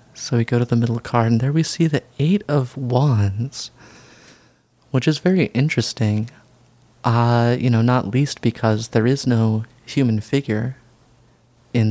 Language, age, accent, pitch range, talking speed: English, 30-49, American, 110-125 Hz, 155 wpm